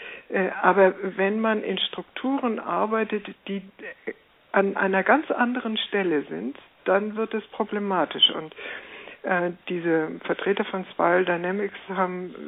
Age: 60-79